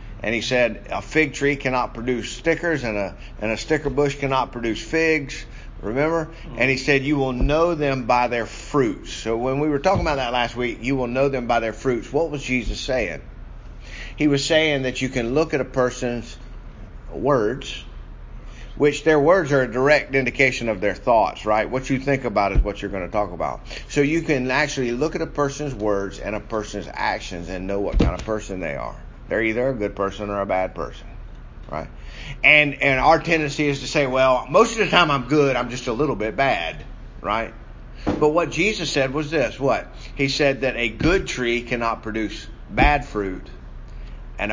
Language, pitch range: English, 105-140 Hz